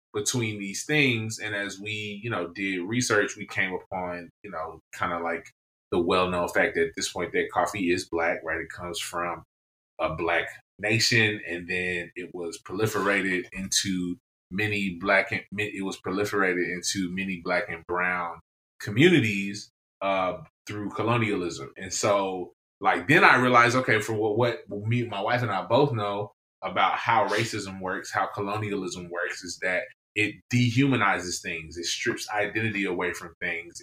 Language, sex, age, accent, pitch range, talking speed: English, male, 20-39, American, 90-115 Hz, 165 wpm